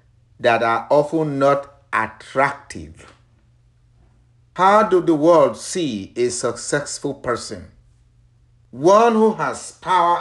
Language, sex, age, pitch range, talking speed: English, male, 50-69, 120-155 Hz, 100 wpm